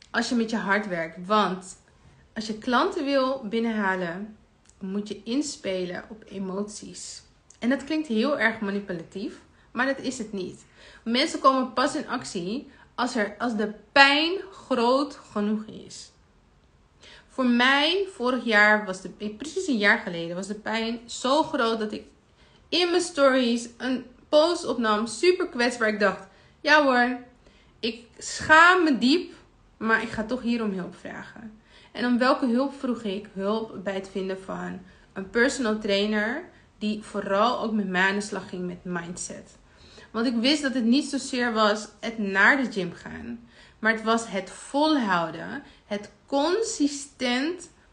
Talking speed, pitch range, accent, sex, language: 155 wpm, 205-265 Hz, Dutch, female, Dutch